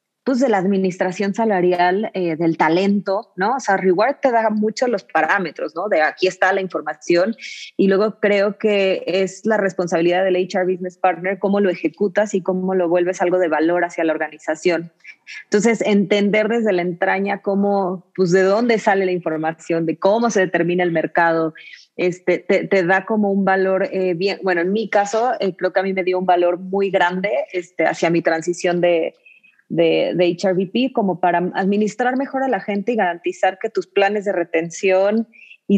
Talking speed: 185 wpm